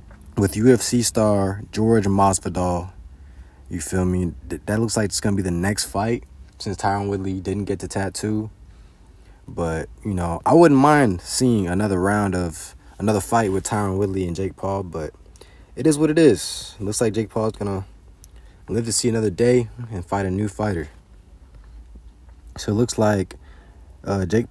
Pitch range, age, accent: 85-110 Hz, 20-39, American